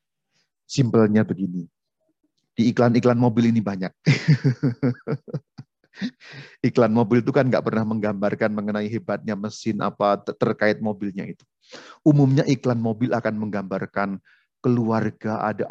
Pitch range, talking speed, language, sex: 105-135 Hz, 105 wpm, Indonesian, male